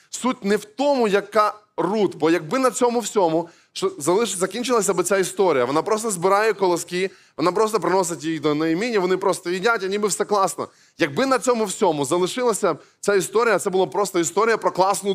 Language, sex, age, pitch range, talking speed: Ukrainian, male, 20-39, 175-215 Hz, 180 wpm